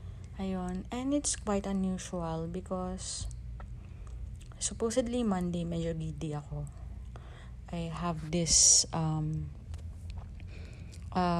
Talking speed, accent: 80 wpm, native